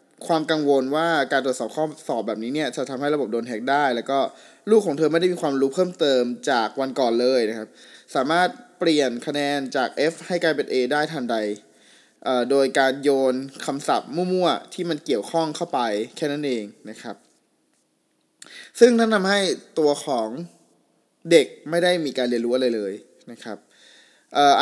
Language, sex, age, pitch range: Thai, male, 20-39, 130-180 Hz